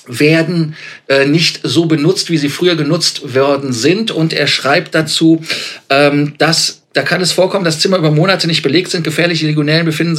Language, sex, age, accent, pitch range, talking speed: German, male, 50-69, German, 135-160 Hz, 185 wpm